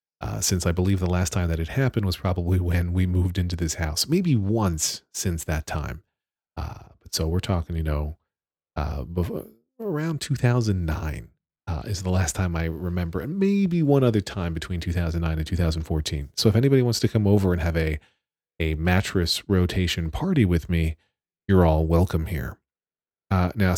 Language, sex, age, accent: English, male, 40-59, American